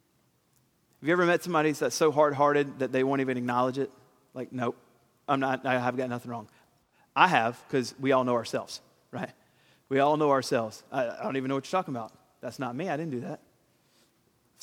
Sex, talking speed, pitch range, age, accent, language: male, 210 wpm, 130-165 Hz, 30-49, American, English